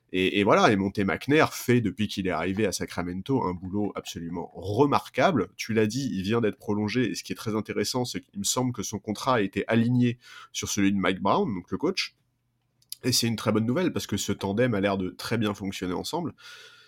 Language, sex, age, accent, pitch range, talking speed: French, male, 30-49, French, 100-130 Hz, 230 wpm